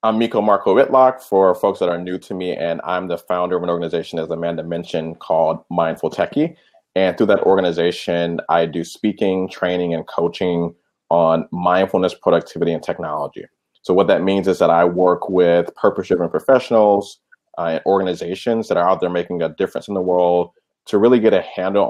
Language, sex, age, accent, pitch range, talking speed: English, male, 30-49, American, 85-100 Hz, 185 wpm